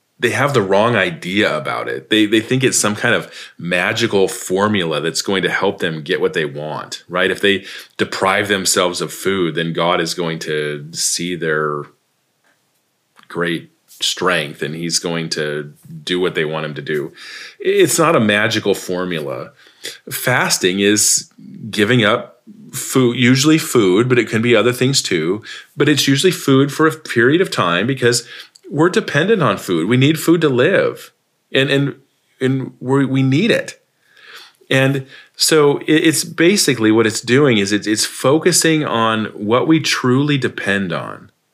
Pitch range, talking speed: 105-140 Hz, 165 wpm